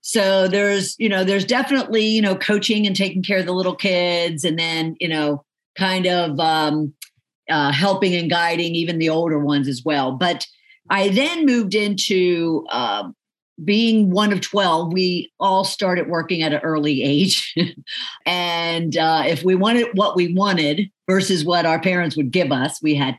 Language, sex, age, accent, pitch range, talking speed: English, female, 50-69, American, 155-195 Hz, 175 wpm